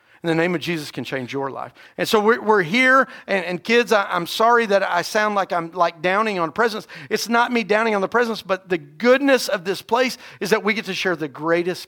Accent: American